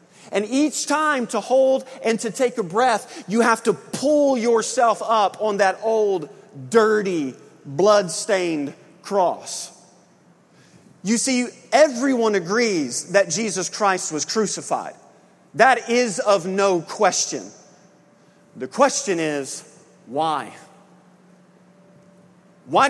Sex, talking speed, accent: male, 105 wpm, American